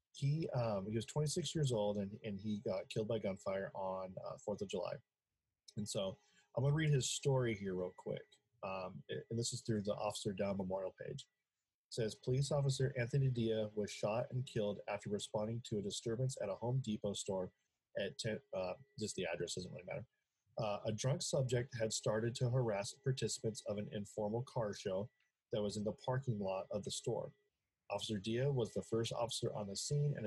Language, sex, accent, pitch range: English, male, American, 100-125 Hz